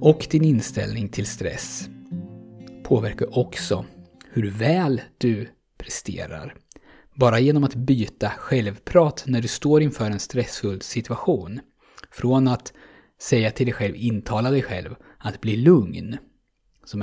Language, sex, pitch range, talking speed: Swedish, male, 105-130 Hz, 125 wpm